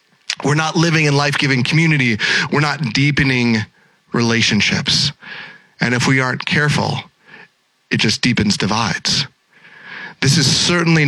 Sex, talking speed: male, 120 wpm